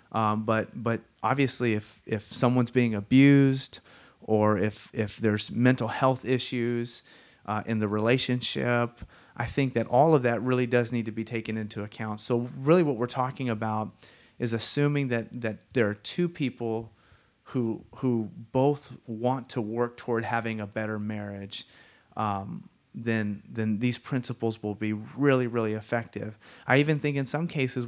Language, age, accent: English, 30-49, American